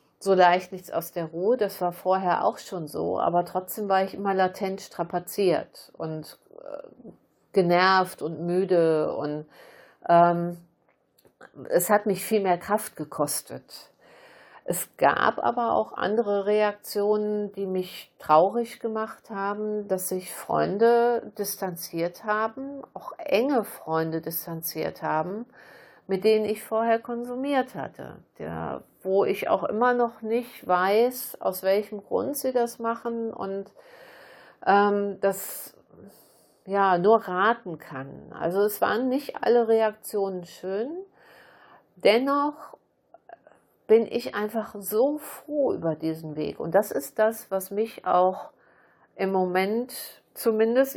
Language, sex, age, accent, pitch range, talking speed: German, female, 50-69, German, 180-230 Hz, 125 wpm